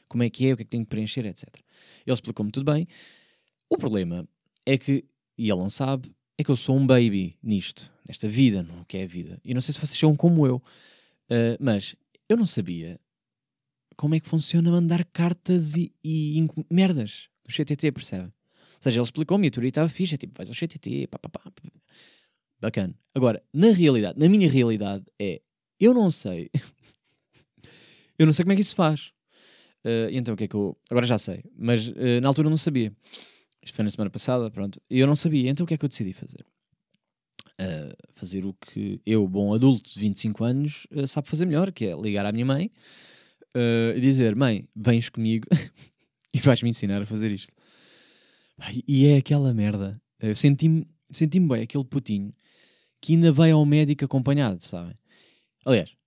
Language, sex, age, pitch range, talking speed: Portuguese, male, 20-39, 105-155 Hz, 195 wpm